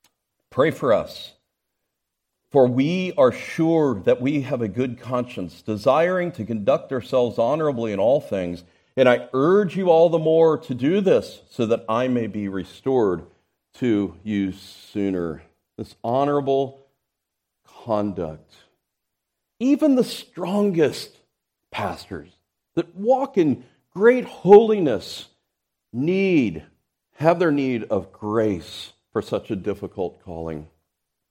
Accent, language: American, English